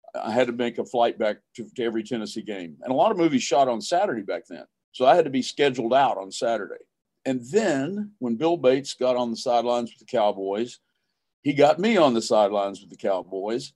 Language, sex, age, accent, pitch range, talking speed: English, male, 50-69, American, 110-140 Hz, 225 wpm